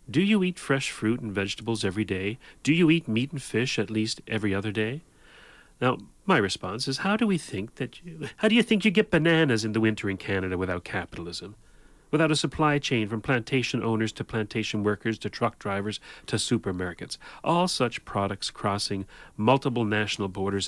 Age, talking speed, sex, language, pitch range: 40-59, 190 wpm, male, English, 105-145 Hz